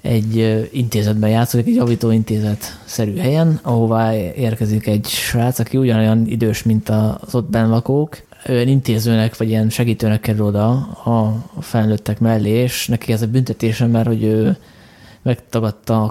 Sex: male